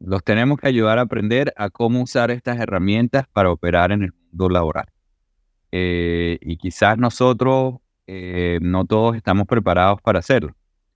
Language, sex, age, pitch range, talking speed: Spanish, male, 30-49, 90-115 Hz, 155 wpm